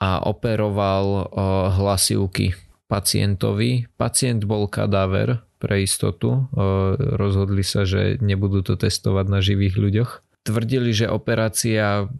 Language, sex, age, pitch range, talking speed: Slovak, male, 20-39, 100-115 Hz, 105 wpm